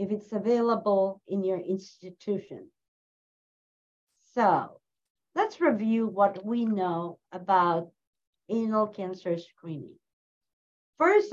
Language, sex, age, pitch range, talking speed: English, female, 50-69, 190-230 Hz, 90 wpm